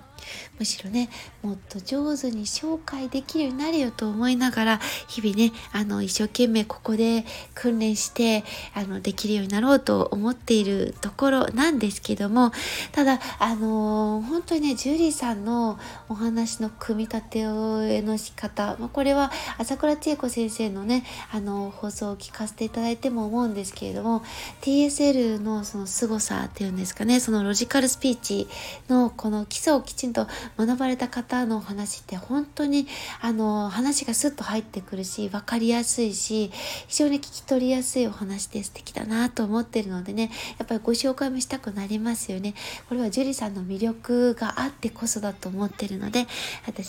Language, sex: Japanese, female